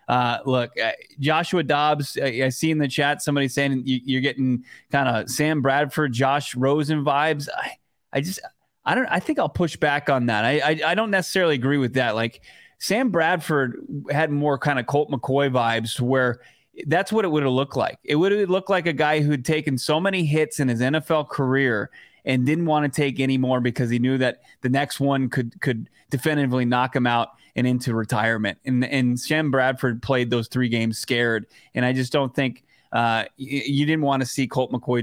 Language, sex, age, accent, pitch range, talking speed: English, male, 20-39, American, 130-155 Hz, 210 wpm